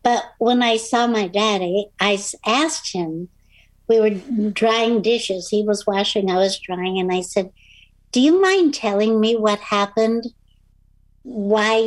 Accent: American